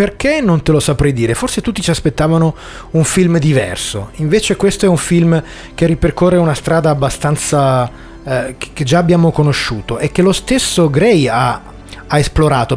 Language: Italian